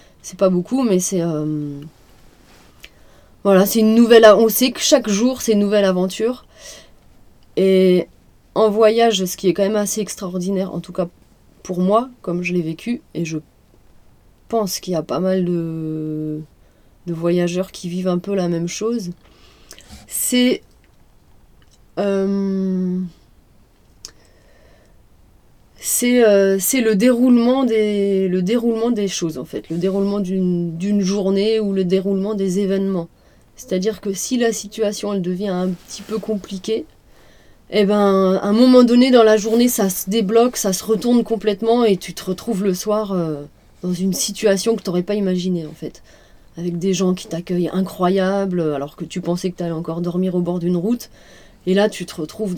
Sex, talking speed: female, 170 wpm